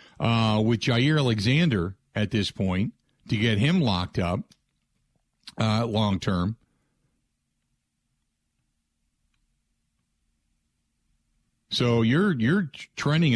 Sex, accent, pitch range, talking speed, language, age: male, American, 100-125 Hz, 85 wpm, English, 50-69